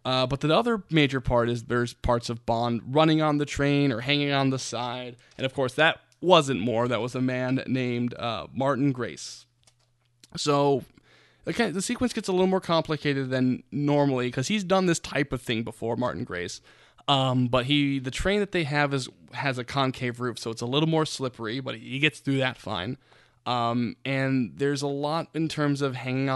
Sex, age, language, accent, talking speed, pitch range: male, 20-39, English, American, 205 wpm, 120-145 Hz